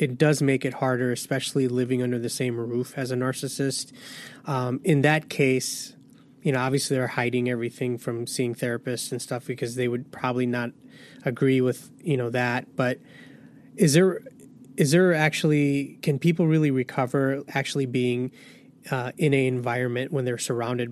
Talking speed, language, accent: 165 wpm, English, American